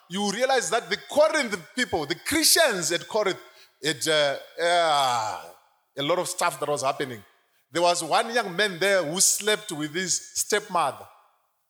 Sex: male